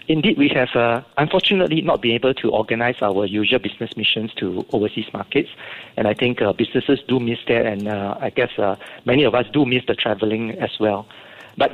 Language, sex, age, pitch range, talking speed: English, male, 50-69, 110-145 Hz, 205 wpm